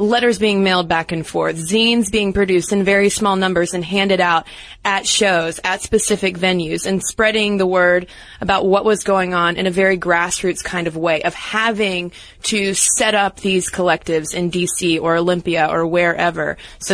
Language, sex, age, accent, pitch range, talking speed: English, female, 20-39, American, 180-215 Hz, 180 wpm